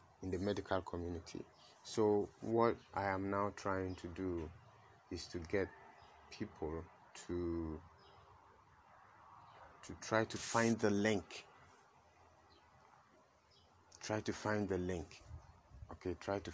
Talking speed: 110 wpm